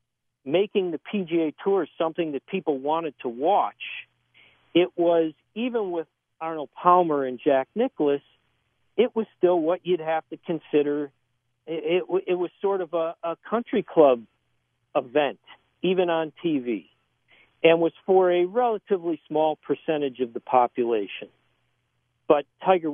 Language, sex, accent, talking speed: English, male, American, 140 wpm